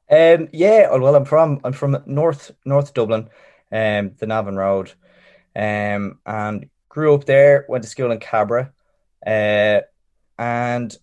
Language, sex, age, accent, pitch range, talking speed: English, male, 20-39, Irish, 100-135 Hz, 140 wpm